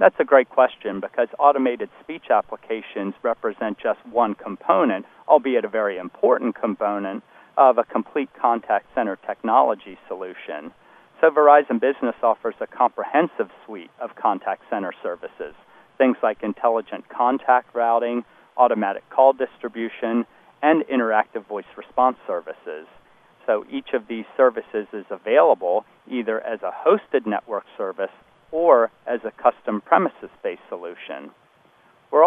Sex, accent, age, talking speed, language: male, American, 40-59, 125 wpm, English